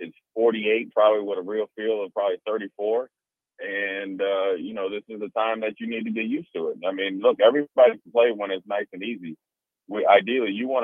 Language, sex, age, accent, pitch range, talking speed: English, male, 30-49, American, 100-150 Hz, 225 wpm